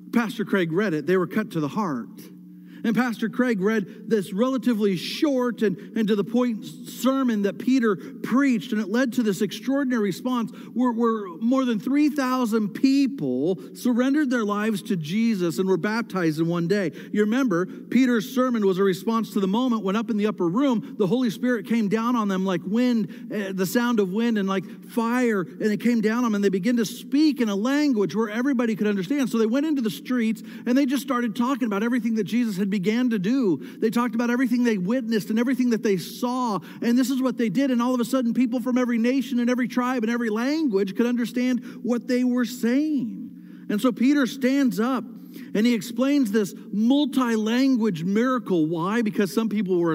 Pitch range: 205-250 Hz